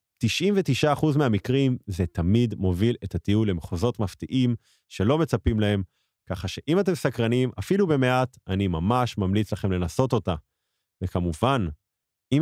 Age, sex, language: 30-49, male, Hebrew